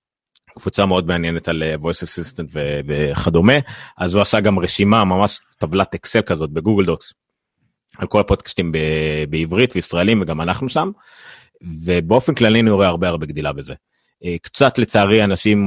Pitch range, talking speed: 85-105 Hz, 150 wpm